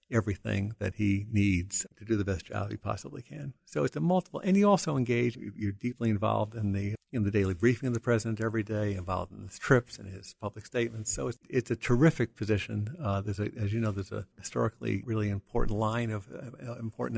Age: 60-79